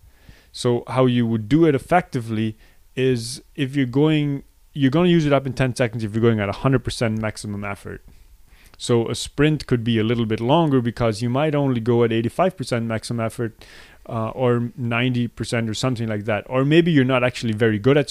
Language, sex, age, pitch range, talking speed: English, male, 30-49, 110-130 Hz, 200 wpm